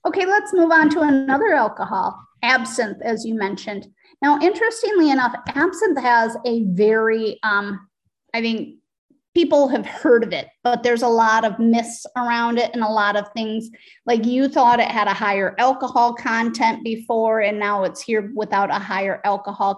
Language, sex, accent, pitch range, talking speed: English, female, American, 215-280 Hz, 175 wpm